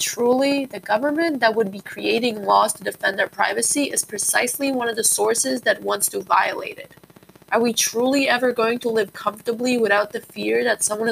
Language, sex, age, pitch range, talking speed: English, female, 20-39, 220-275 Hz, 195 wpm